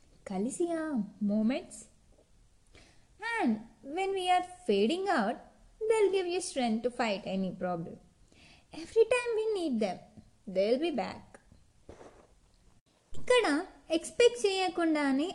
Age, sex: 20-39, female